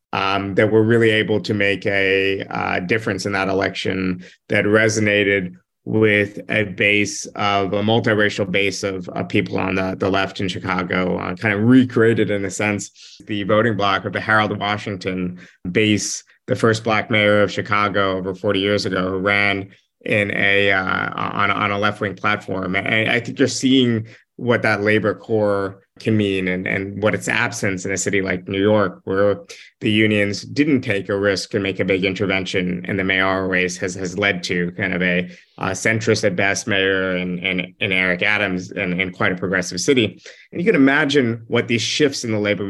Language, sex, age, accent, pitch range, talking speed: English, male, 20-39, American, 95-110 Hz, 195 wpm